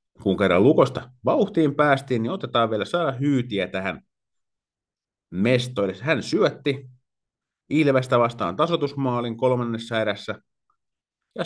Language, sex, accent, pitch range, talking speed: Finnish, male, native, 105-130 Hz, 105 wpm